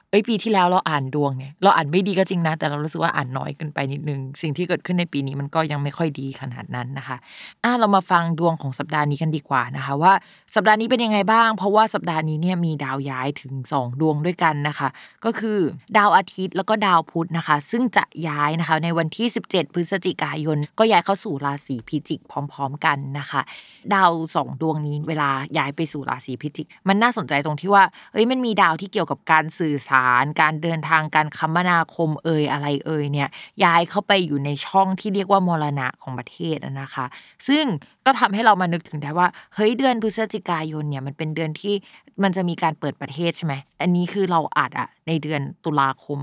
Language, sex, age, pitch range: Thai, female, 20-39, 150-195 Hz